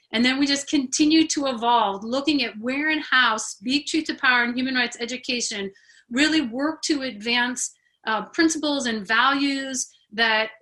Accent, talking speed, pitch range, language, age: American, 165 wpm, 230-280 Hz, English, 30-49